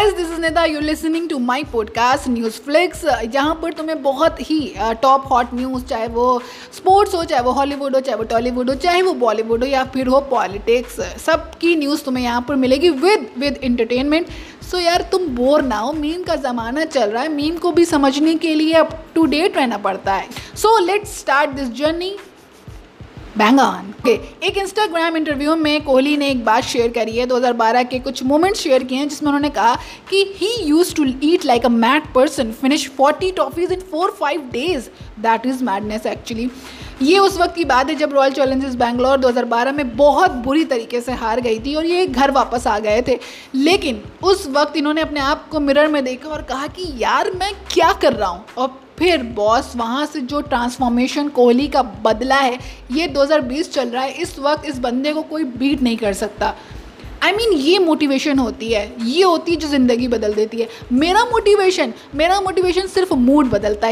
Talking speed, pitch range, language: 195 wpm, 250-325 Hz, Hindi